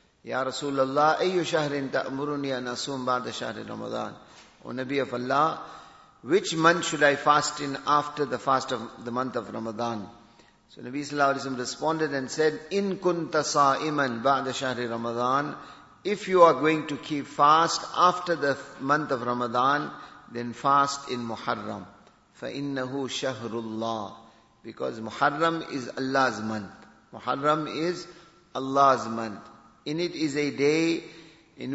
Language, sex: English, male